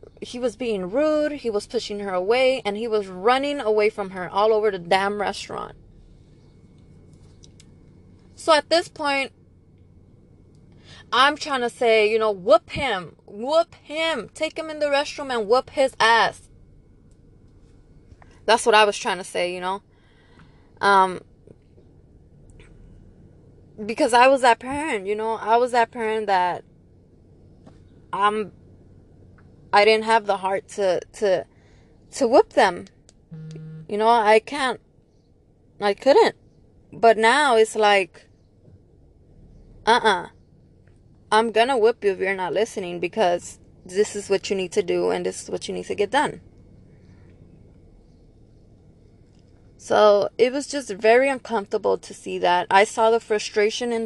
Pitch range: 150-240 Hz